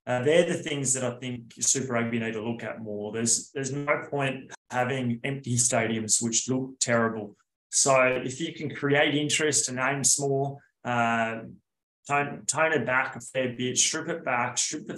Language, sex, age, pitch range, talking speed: English, male, 20-39, 120-140 Hz, 185 wpm